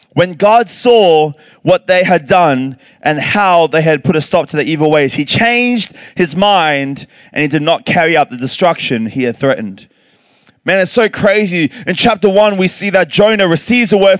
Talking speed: 200 wpm